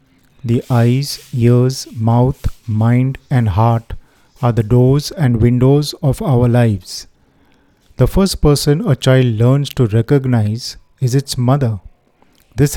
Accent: native